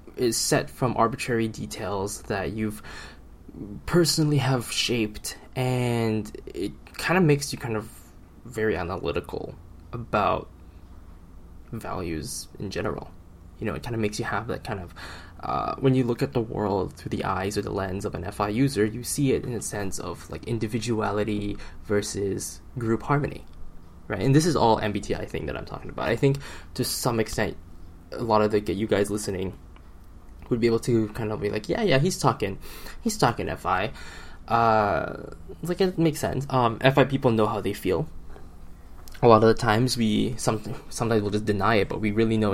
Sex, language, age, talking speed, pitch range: male, English, 10-29, 185 wpm, 90-120 Hz